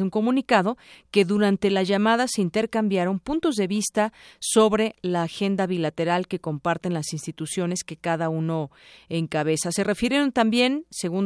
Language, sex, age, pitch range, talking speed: Spanish, female, 40-59, 165-210 Hz, 145 wpm